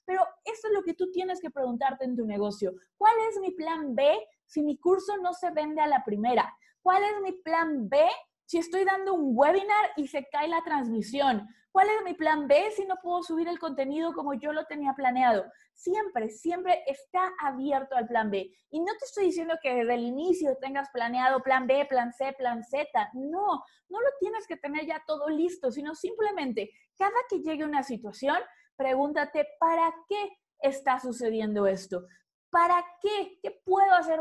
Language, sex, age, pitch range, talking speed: Spanish, female, 20-39, 250-355 Hz, 190 wpm